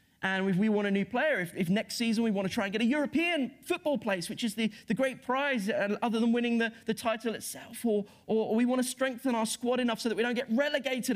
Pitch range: 190-250 Hz